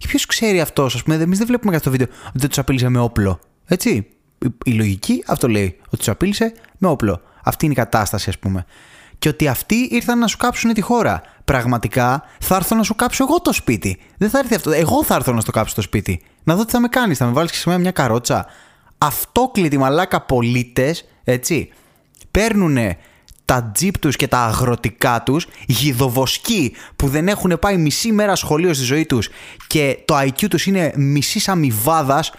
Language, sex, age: Greek, male, 20-39